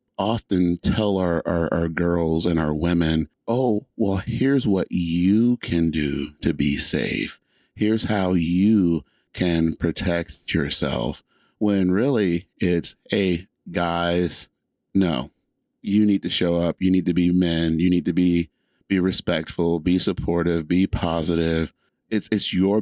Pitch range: 80-95 Hz